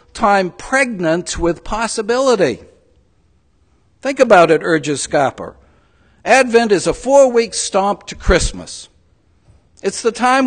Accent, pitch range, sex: American, 135-225 Hz, male